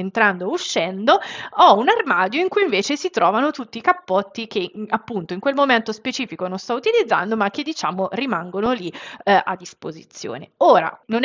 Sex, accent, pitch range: female, native, 190-285 Hz